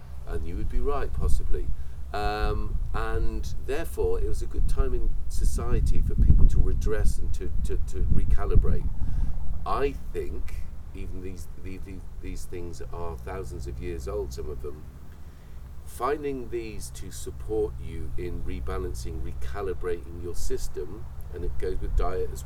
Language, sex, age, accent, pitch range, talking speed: English, male, 40-59, British, 65-95 Hz, 150 wpm